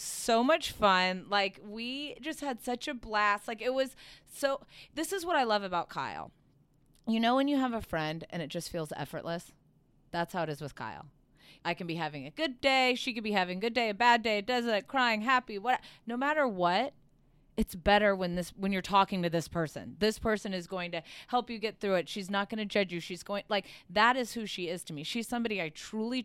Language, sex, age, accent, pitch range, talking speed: English, female, 30-49, American, 165-220 Hz, 240 wpm